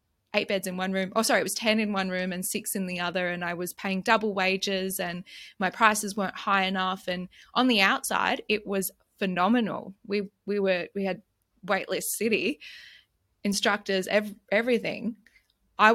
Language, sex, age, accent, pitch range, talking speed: English, female, 20-39, Australian, 185-215 Hz, 175 wpm